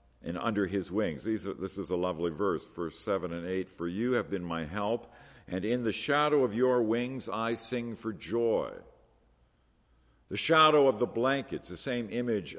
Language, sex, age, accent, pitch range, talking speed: English, male, 50-69, American, 75-100 Hz, 180 wpm